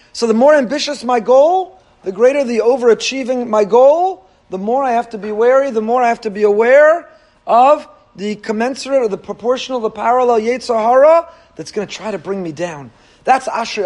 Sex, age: male, 40-59